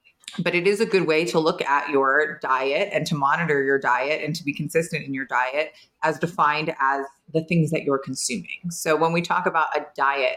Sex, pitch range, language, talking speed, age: female, 145-190 Hz, English, 220 wpm, 30-49